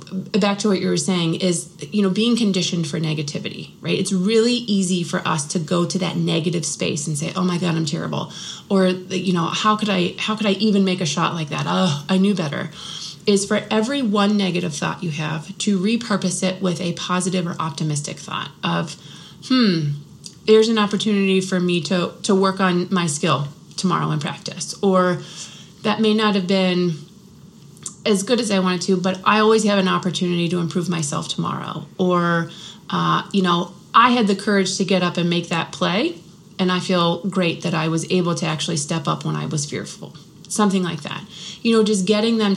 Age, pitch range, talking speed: 30-49, 170-195 Hz, 205 wpm